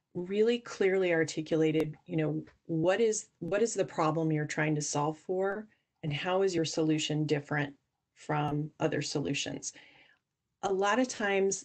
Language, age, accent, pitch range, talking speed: English, 30-49, American, 155-190 Hz, 150 wpm